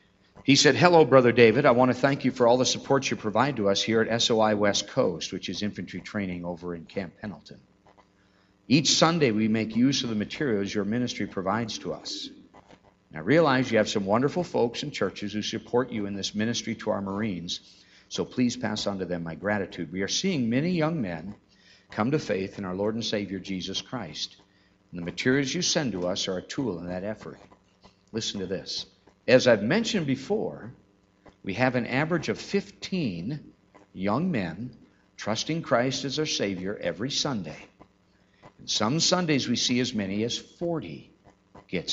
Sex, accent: male, American